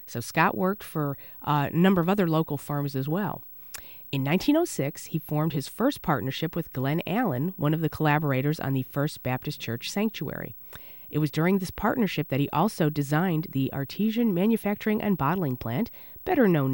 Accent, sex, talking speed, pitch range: American, female, 180 wpm, 135-175 Hz